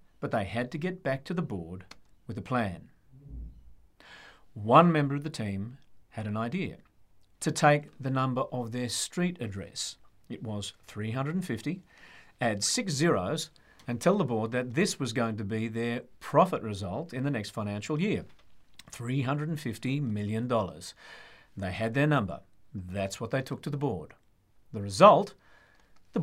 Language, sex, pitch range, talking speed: English, male, 100-145 Hz, 155 wpm